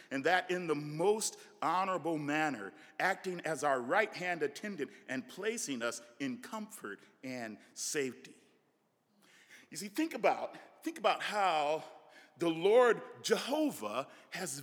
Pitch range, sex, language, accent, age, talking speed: 175-290 Hz, male, English, American, 50-69, 125 wpm